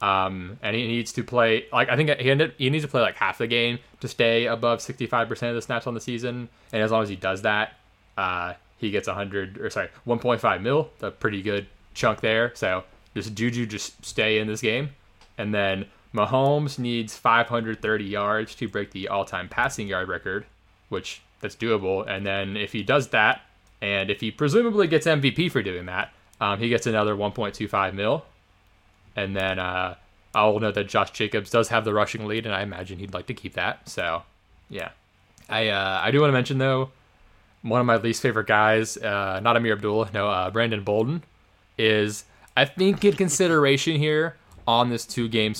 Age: 20-39